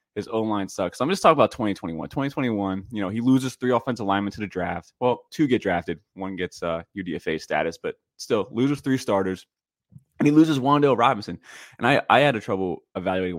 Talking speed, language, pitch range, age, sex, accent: 210 wpm, English, 95-115 Hz, 20-39, male, American